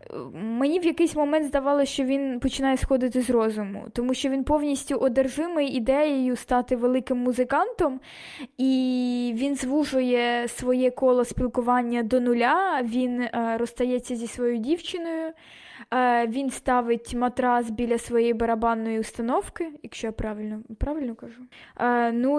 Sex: female